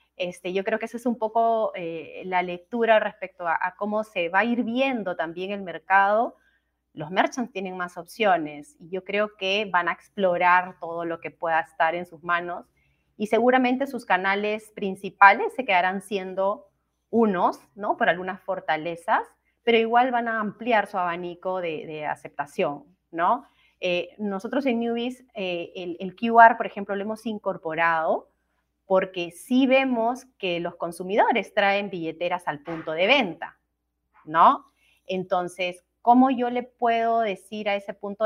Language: Spanish